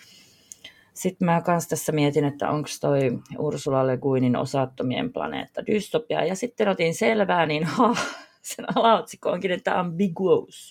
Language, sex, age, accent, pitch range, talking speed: Finnish, female, 30-49, native, 135-195 Hz, 140 wpm